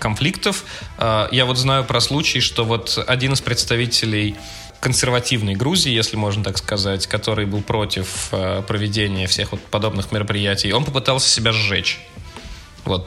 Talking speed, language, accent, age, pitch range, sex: 130 wpm, Russian, native, 20-39, 105-130 Hz, male